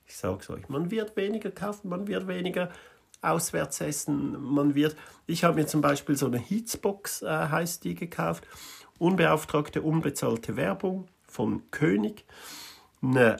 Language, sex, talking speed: German, male, 150 wpm